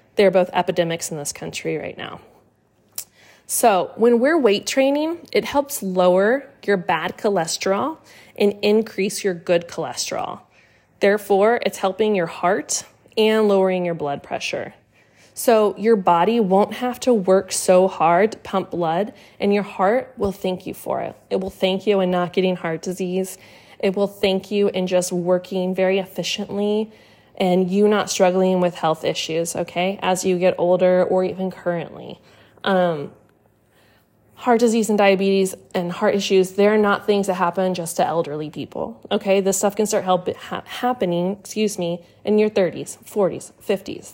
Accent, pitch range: American, 180-205 Hz